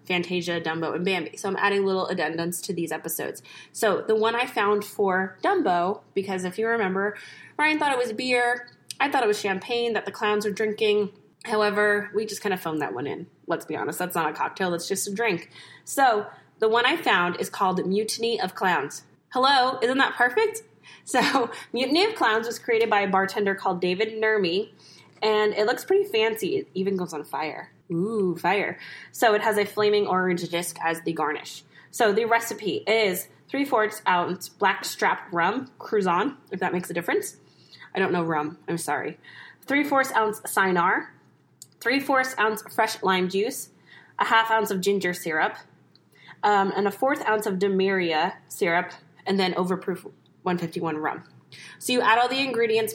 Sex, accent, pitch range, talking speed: female, American, 180-225 Hz, 180 wpm